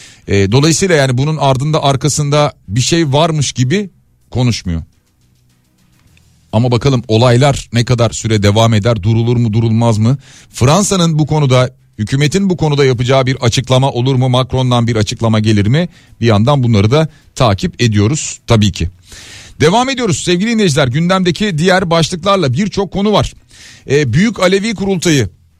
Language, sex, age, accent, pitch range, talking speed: Turkish, male, 40-59, native, 115-155 Hz, 140 wpm